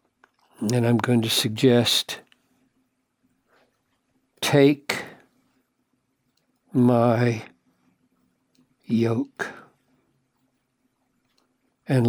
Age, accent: 60-79, American